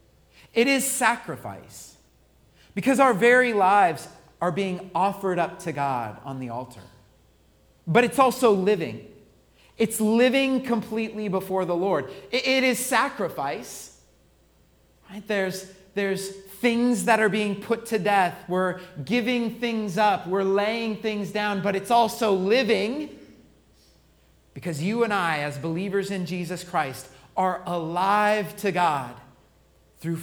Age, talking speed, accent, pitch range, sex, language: 40-59, 125 wpm, American, 175-225 Hz, male, English